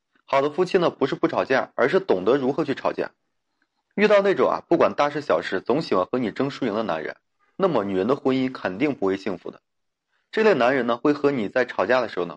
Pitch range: 115-160 Hz